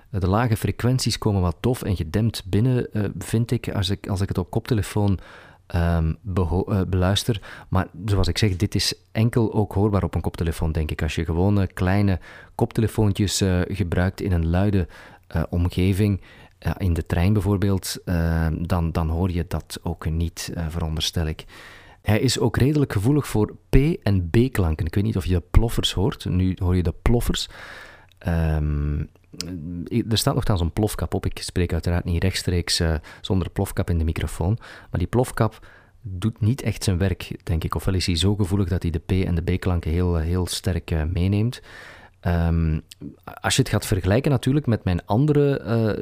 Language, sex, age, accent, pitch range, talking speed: Dutch, male, 40-59, Dutch, 85-110 Hz, 180 wpm